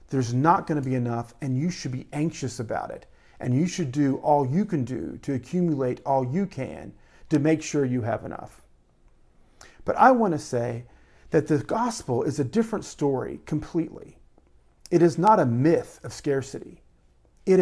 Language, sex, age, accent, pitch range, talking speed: English, male, 40-59, American, 120-160 Hz, 180 wpm